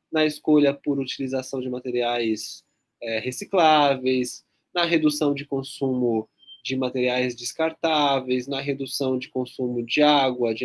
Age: 20-39